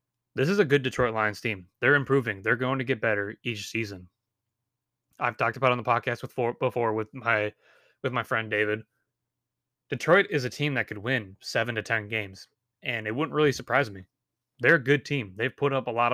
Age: 20-39